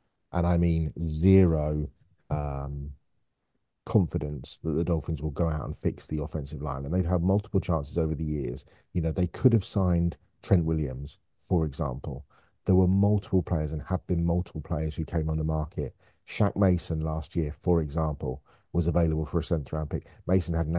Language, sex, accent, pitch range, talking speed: English, male, British, 80-90 Hz, 185 wpm